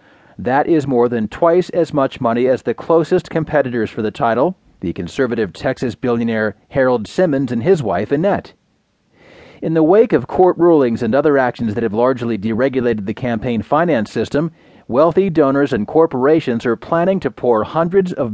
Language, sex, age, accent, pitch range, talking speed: English, male, 40-59, American, 120-165 Hz, 170 wpm